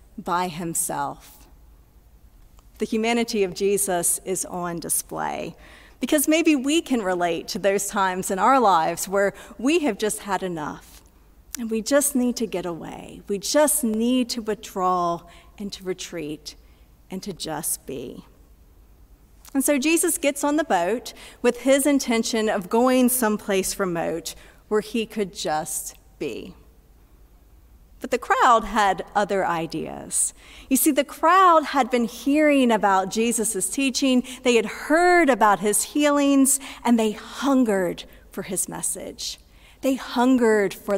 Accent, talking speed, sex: American, 140 wpm, female